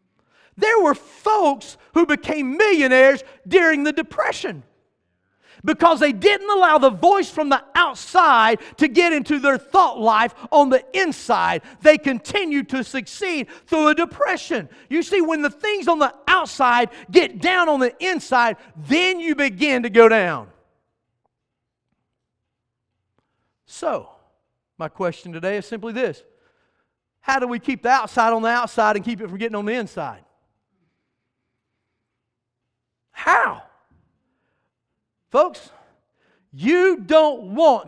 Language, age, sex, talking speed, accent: English, 40-59, male, 130 wpm, American